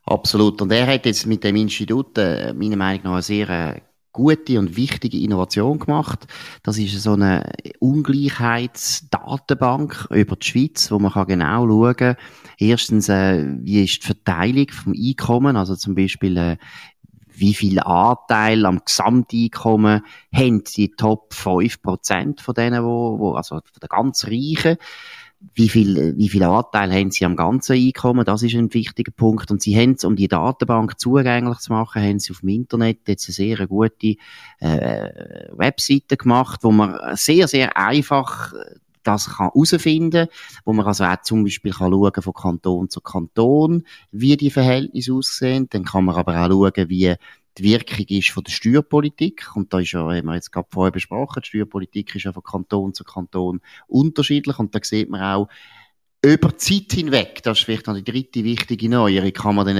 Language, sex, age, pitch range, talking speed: German, male, 30-49, 100-130 Hz, 170 wpm